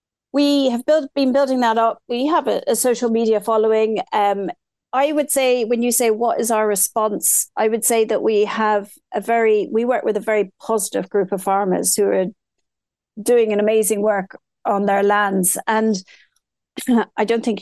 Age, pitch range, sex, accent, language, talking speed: 40-59, 200-240 Hz, female, British, English, 185 wpm